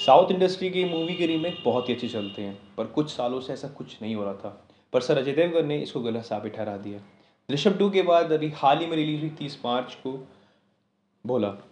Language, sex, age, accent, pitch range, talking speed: Hindi, male, 20-39, native, 120-155 Hz, 230 wpm